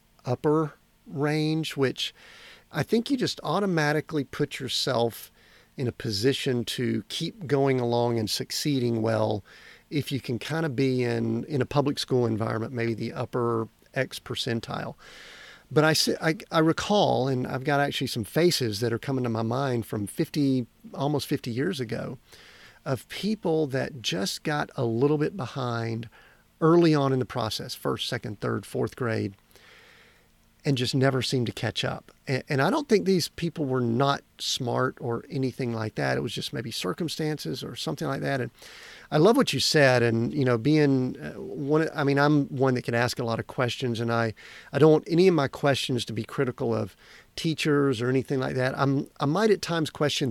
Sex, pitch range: male, 115-150 Hz